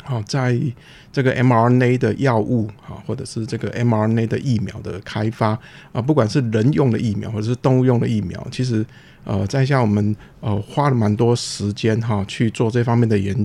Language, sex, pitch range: Chinese, male, 110-140 Hz